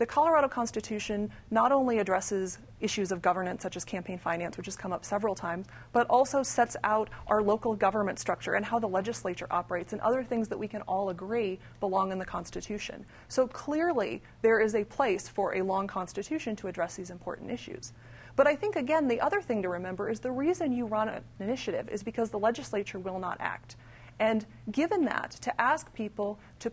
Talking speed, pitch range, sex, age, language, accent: 200 wpm, 190-250 Hz, female, 30-49, English, American